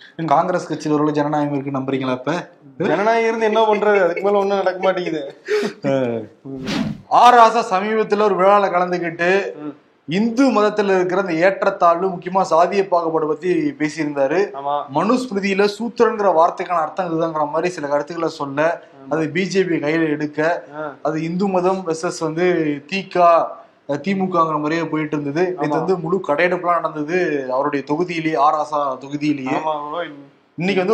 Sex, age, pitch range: male, 20-39, 150-190 Hz